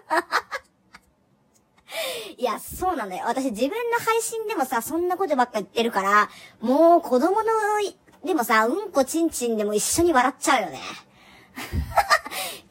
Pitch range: 210-335 Hz